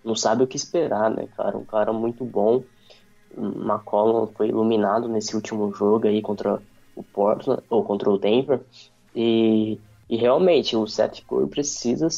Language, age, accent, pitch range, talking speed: Portuguese, 10-29, Brazilian, 110-140 Hz, 165 wpm